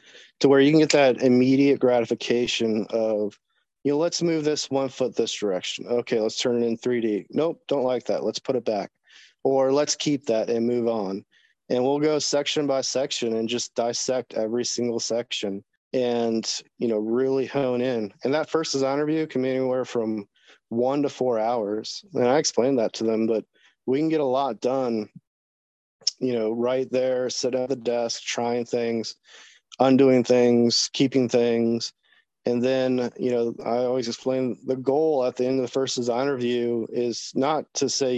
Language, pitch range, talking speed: English, 115-135 Hz, 185 wpm